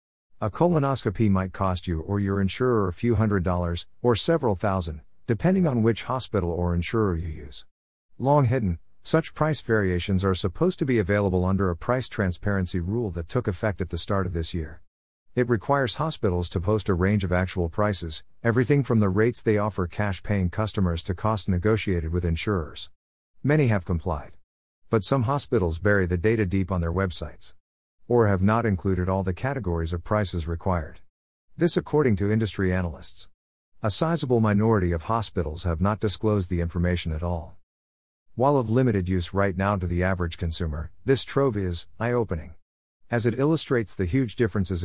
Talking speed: 175 wpm